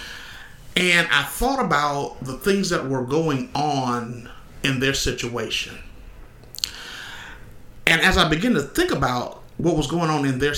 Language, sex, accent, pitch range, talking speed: English, male, American, 130-185 Hz, 145 wpm